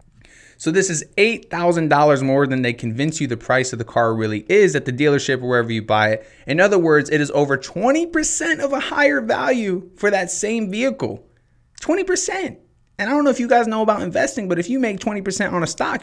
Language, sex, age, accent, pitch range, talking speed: English, male, 30-49, American, 115-185 Hz, 215 wpm